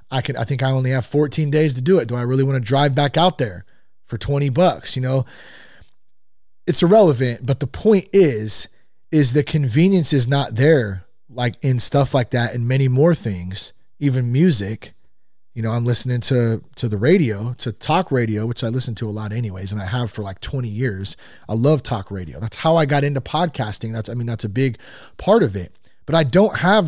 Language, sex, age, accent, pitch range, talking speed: English, male, 30-49, American, 110-145 Hz, 215 wpm